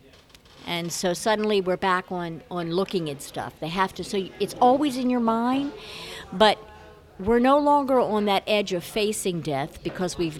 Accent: American